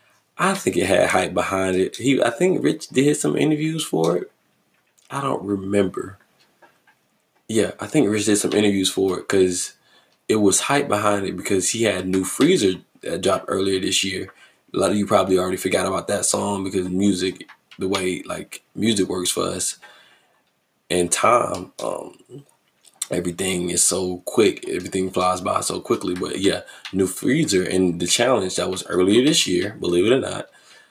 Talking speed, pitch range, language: 175 wpm, 90-100 Hz, English